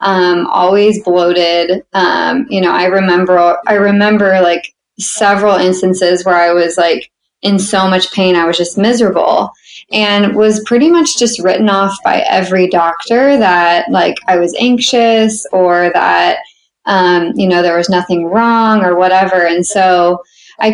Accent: American